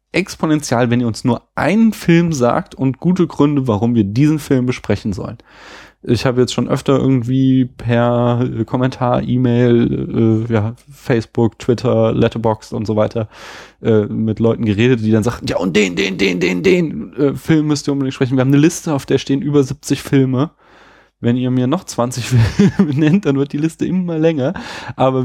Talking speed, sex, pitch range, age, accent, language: 185 wpm, male, 110-135 Hz, 20-39, German, German